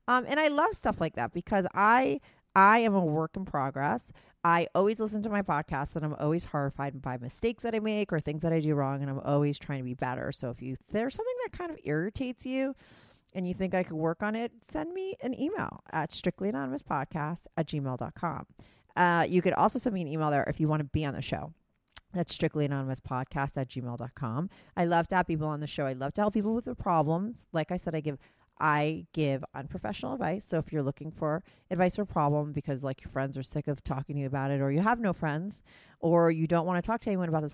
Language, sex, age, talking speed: English, female, 40-59, 240 wpm